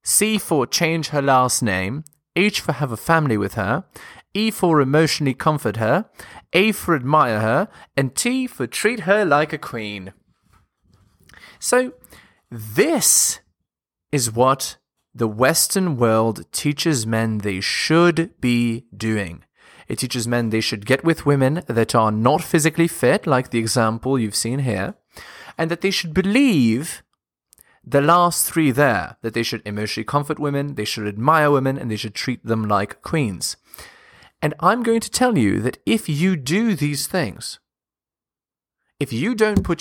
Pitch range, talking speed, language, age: 110-160 Hz, 155 wpm, English, 20-39